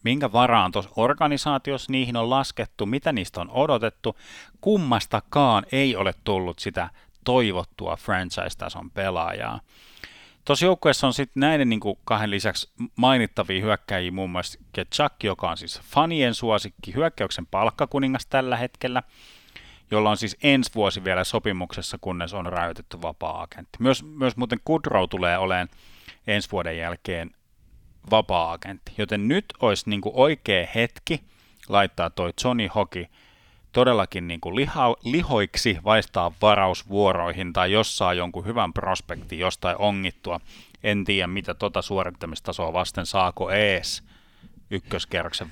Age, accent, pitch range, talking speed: 30-49, native, 90-125 Hz, 125 wpm